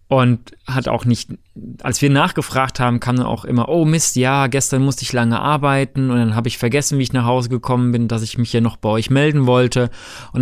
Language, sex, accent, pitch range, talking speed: German, male, German, 115-140 Hz, 240 wpm